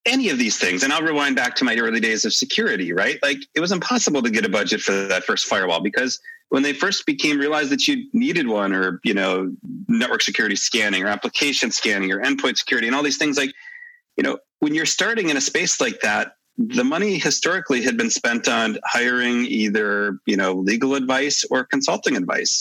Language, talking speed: English, 210 wpm